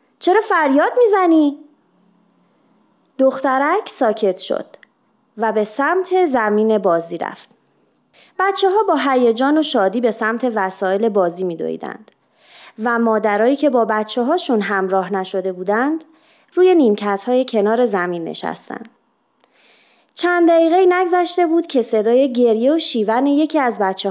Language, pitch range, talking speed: Persian, 215-330 Hz, 125 wpm